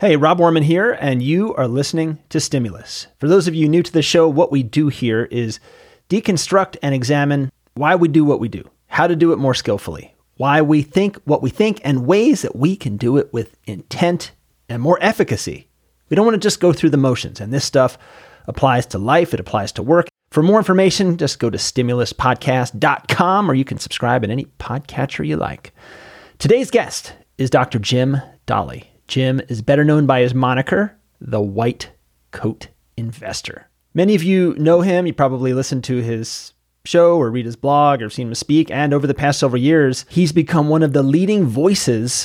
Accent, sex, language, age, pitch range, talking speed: American, male, English, 30-49, 125-160 Hz, 200 wpm